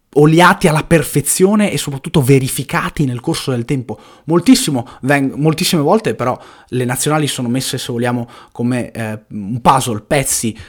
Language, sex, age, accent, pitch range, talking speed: Italian, male, 20-39, native, 115-150 Hz, 135 wpm